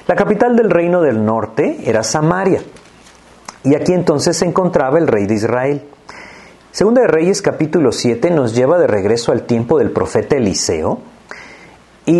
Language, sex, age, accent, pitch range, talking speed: Spanish, male, 40-59, Mexican, 115-175 Hz, 155 wpm